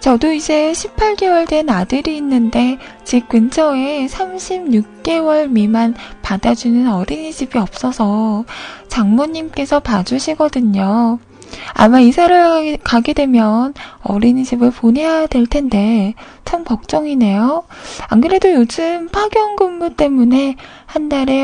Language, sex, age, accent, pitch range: Korean, female, 20-39, native, 230-310 Hz